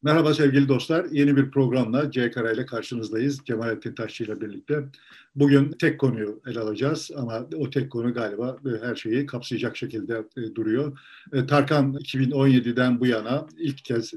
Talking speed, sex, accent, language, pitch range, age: 135 wpm, male, native, Turkish, 120-145 Hz, 50-69